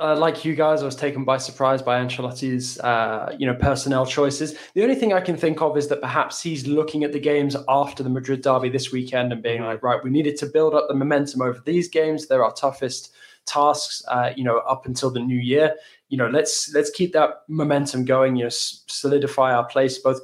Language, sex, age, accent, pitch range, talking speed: English, male, 20-39, British, 125-145 Hz, 230 wpm